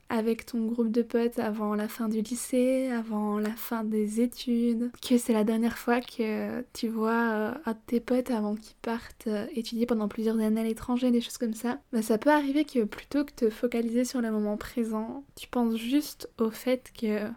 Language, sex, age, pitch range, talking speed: French, female, 20-39, 220-245 Hz, 205 wpm